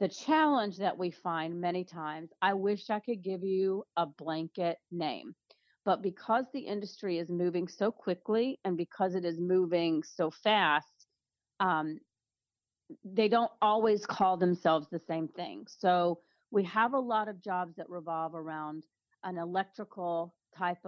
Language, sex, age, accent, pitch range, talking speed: English, female, 40-59, American, 165-205 Hz, 150 wpm